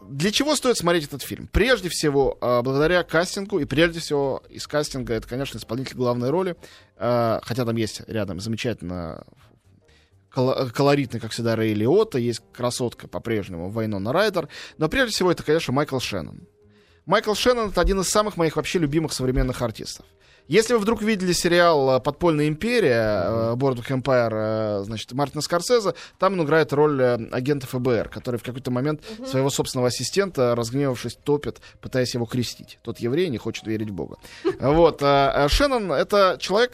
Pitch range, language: 120-170 Hz, Russian